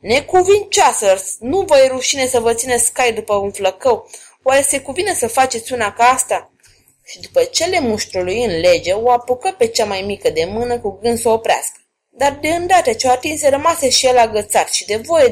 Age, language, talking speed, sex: 20-39, Romanian, 200 wpm, female